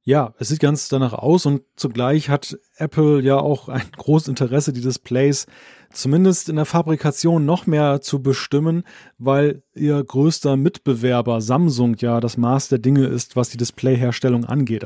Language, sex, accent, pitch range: German, male, German, 135-160 Hz